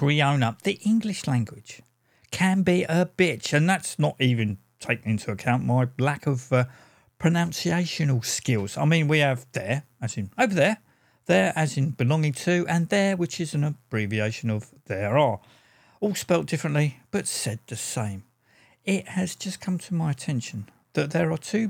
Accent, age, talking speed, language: British, 50-69, 175 wpm, English